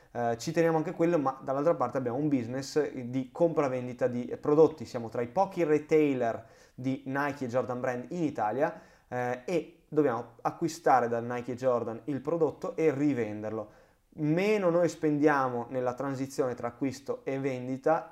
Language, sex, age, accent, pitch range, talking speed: Italian, male, 20-39, native, 125-155 Hz, 160 wpm